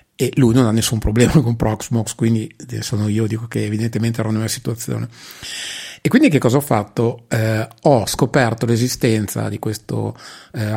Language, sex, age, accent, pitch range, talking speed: Italian, male, 30-49, native, 115-135 Hz, 165 wpm